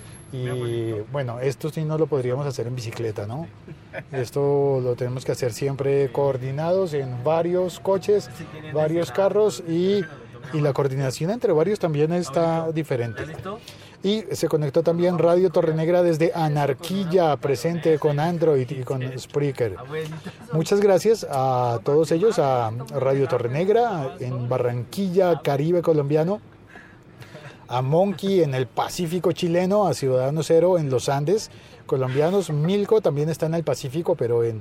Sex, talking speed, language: male, 135 wpm, Spanish